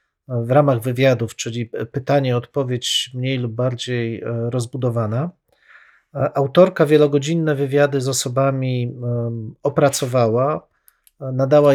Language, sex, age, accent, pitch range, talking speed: Polish, male, 40-59, native, 125-155 Hz, 80 wpm